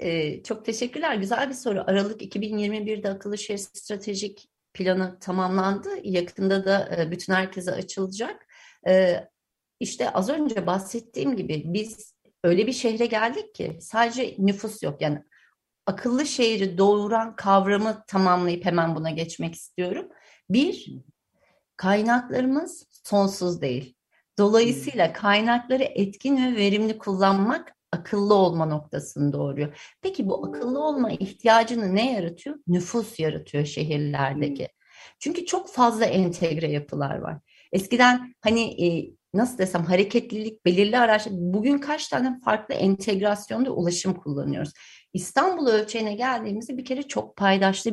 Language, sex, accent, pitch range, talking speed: Turkish, female, native, 180-230 Hz, 115 wpm